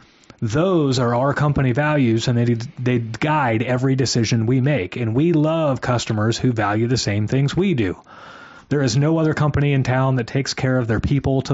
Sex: male